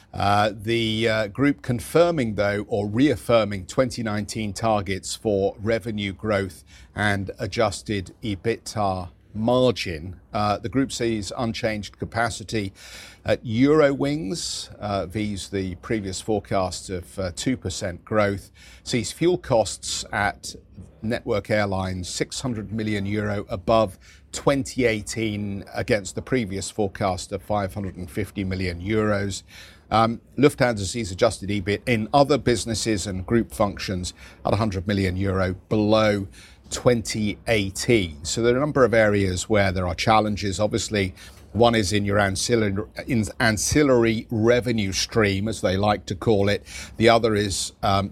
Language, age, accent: English, 50-69, British